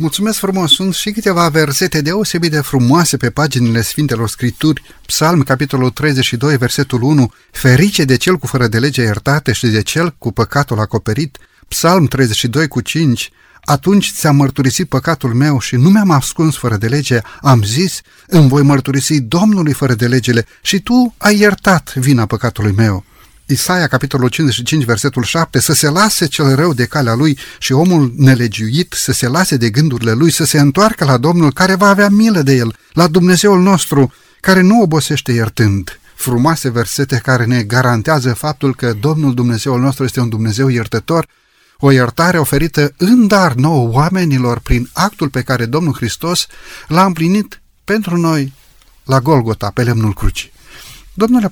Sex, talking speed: male, 165 wpm